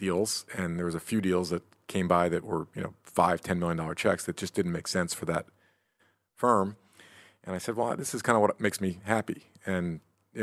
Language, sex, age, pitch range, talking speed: Hebrew, male, 40-59, 85-100 Hz, 230 wpm